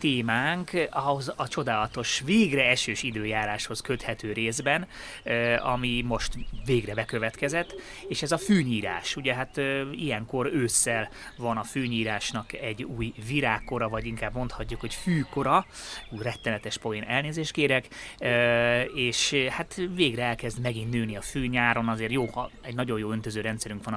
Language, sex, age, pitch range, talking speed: Hungarian, male, 30-49, 110-130 Hz, 140 wpm